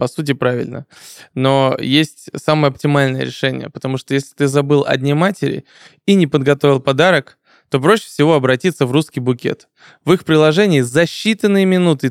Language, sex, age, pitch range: Russian, male, 20-39, 125-155 Hz